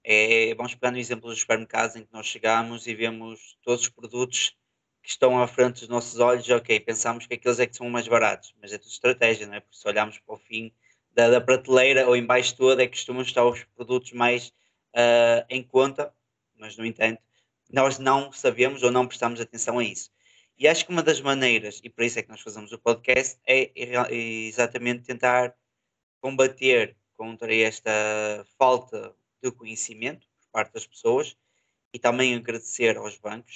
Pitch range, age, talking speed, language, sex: 115-130 Hz, 20-39, 190 wpm, Portuguese, male